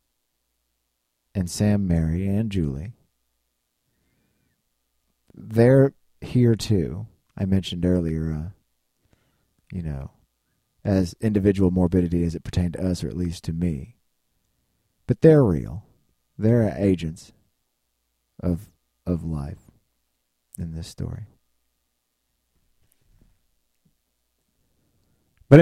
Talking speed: 90 wpm